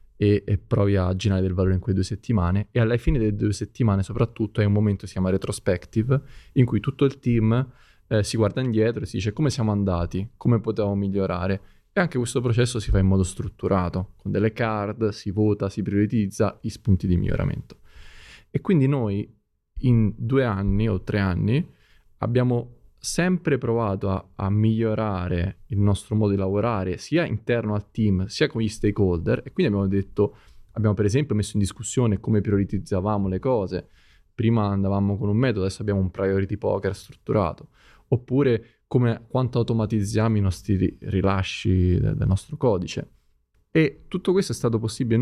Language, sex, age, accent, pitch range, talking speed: Italian, male, 20-39, native, 100-120 Hz, 175 wpm